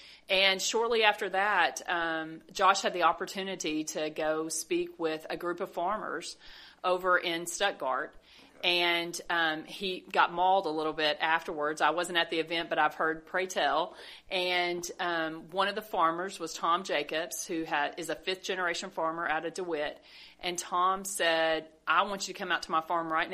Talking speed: 180 wpm